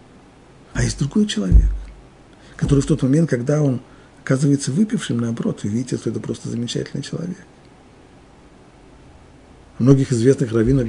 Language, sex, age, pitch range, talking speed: Russian, male, 50-69, 120-165 Hz, 125 wpm